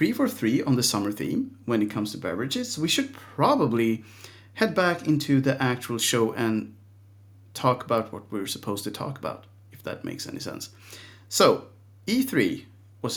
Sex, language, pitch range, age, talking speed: male, Swedish, 100-150 Hz, 40-59, 165 wpm